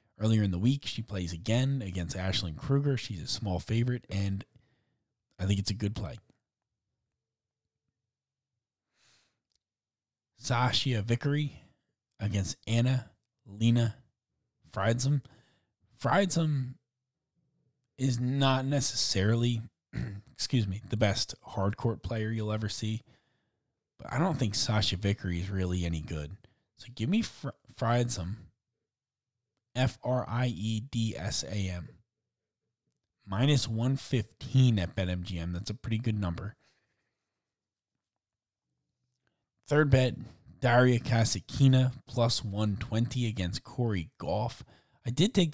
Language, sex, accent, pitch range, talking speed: English, male, American, 100-125 Hz, 100 wpm